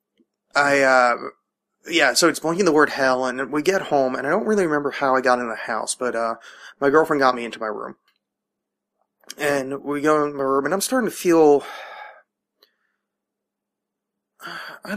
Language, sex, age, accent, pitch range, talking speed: English, male, 20-39, American, 125-145 Hz, 180 wpm